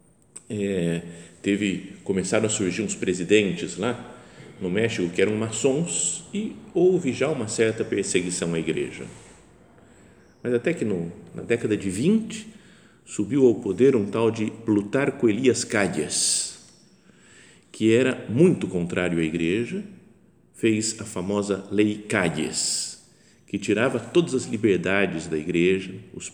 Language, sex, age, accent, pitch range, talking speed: Portuguese, male, 50-69, Brazilian, 95-135 Hz, 125 wpm